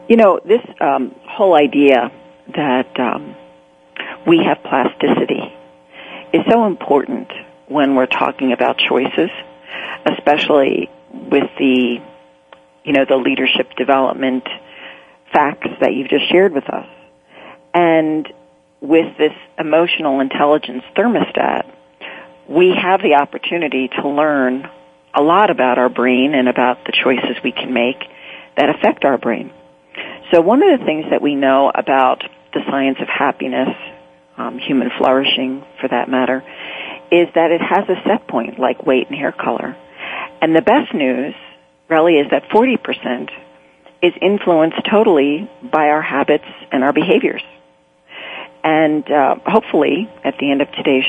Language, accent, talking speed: English, American, 135 wpm